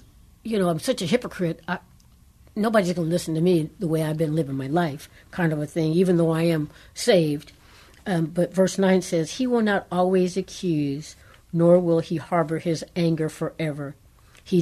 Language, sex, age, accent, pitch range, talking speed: English, female, 60-79, American, 155-190 Hz, 190 wpm